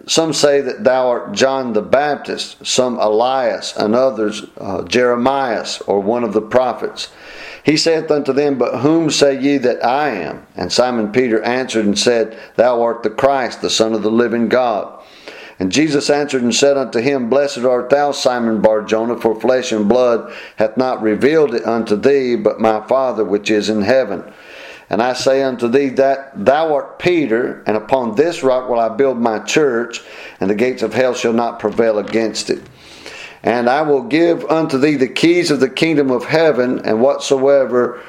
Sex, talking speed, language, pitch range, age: male, 190 wpm, English, 115-140 Hz, 50-69